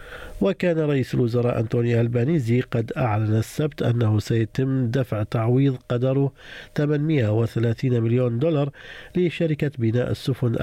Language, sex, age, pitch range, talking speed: Arabic, male, 50-69, 115-140 Hz, 105 wpm